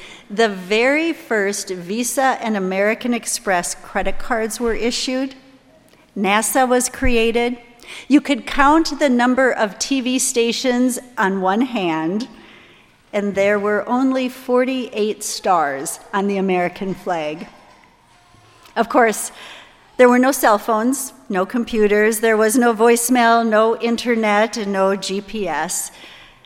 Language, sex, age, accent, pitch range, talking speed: English, female, 50-69, American, 195-245 Hz, 120 wpm